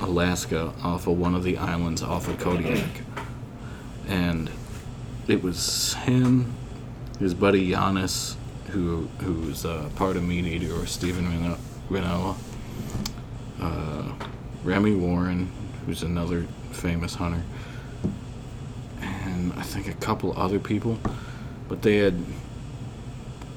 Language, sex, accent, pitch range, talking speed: English, male, American, 95-120 Hz, 110 wpm